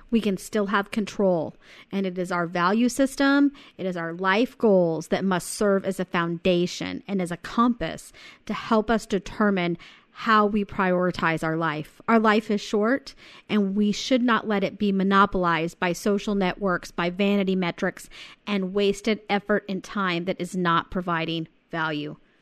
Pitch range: 180-220 Hz